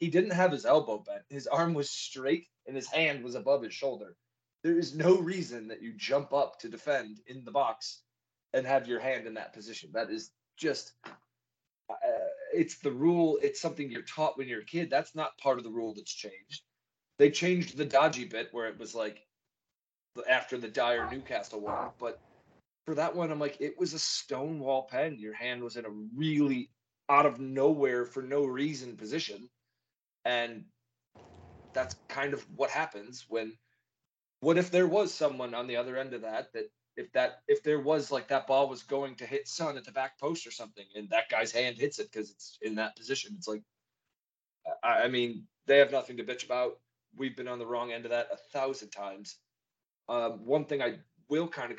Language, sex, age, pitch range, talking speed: English, male, 20-39, 120-155 Hz, 195 wpm